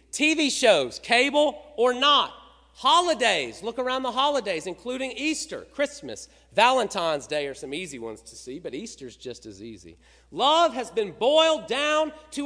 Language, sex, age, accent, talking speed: English, male, 40-59, American, 155 wpm